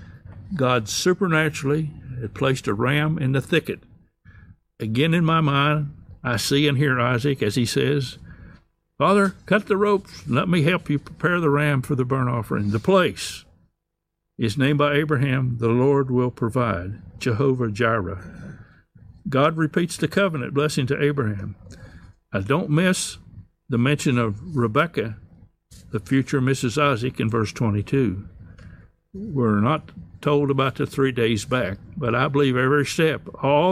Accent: American